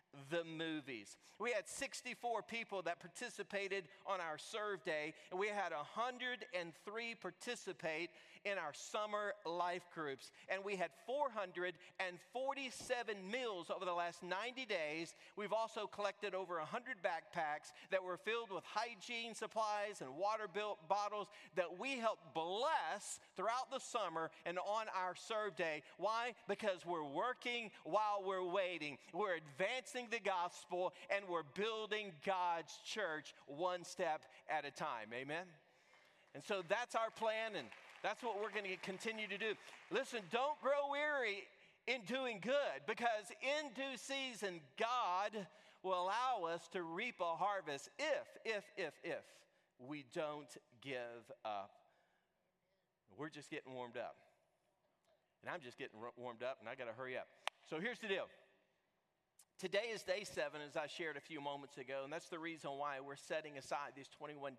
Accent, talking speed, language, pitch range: American, 155 wpm, English, 165-220 Hz